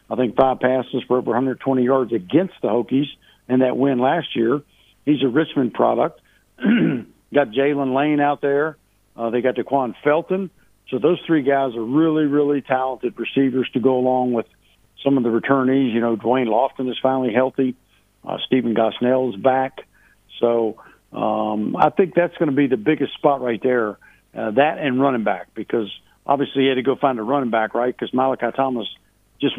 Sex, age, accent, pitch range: male, 60-79, American, 120-140 Hz